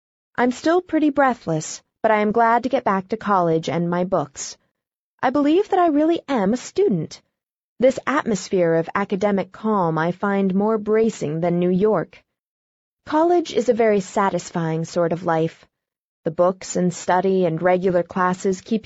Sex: female